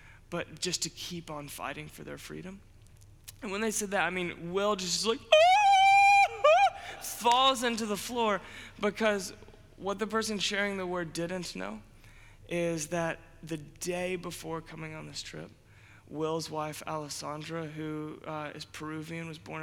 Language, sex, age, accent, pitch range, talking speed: English, male, 20-39, American, 115-175 Hz, 155 wpm